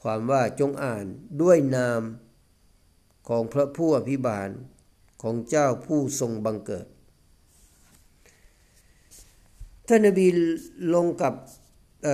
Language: Thai